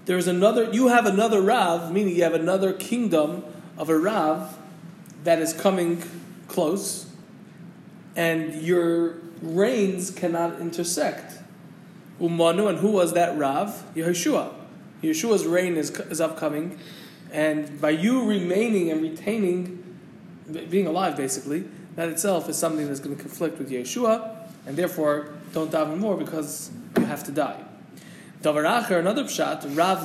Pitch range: 165-205 Hz